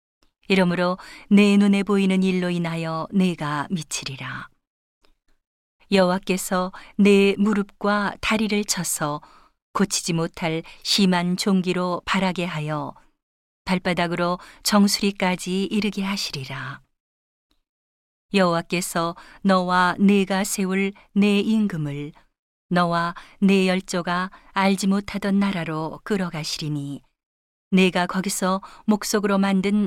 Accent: native